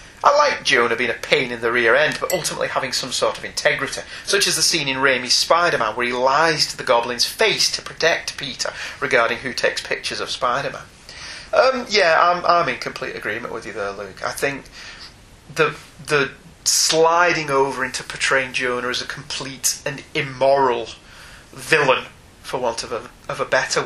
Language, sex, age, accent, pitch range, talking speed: English, male, 30-49, British, 130-160 Hz, 185 wpm